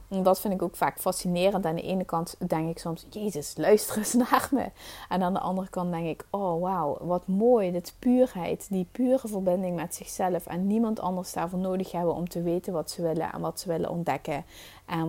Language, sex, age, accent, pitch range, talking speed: Dutch, female, 30-49, Dutch, 165-200 Hz, 215 wpm